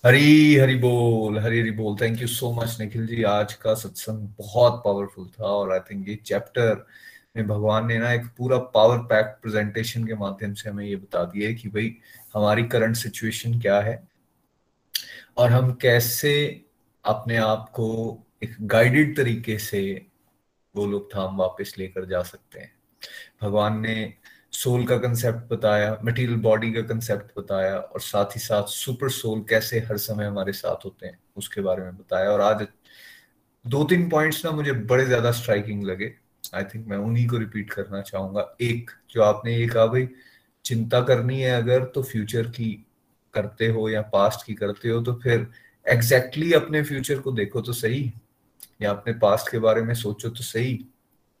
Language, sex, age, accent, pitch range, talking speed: Hindi, male, 30-49, native, 105-120 Hz, 175 wpm